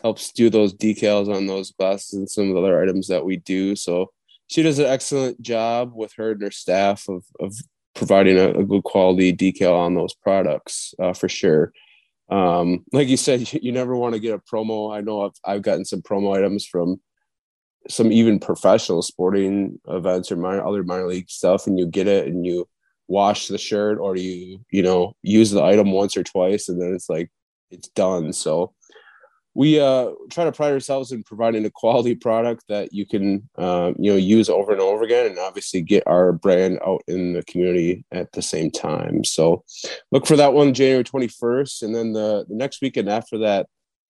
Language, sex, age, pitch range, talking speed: English, male, 20-39, 95-120 Hz, 200 wpm